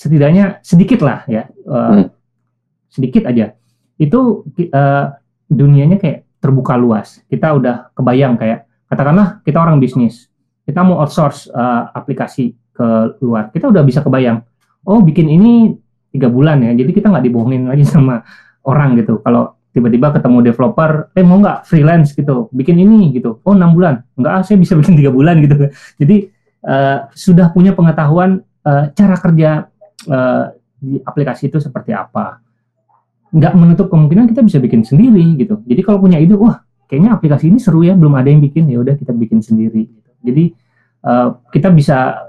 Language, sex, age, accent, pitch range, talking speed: Indonesian, male, 20-39, native, 125-180 Hz, 160 wpm